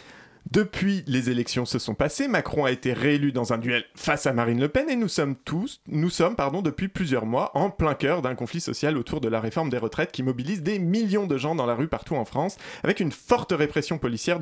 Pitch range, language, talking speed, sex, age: 130-180 Hz, French, 235 wpm, male, 30-49